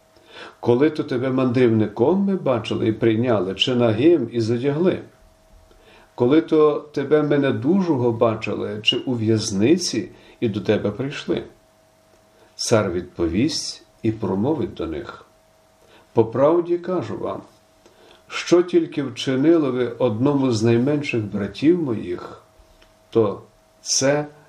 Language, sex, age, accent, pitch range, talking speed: Ukrainian, male, 50-69, native, 105-135 Hz, 105 wpm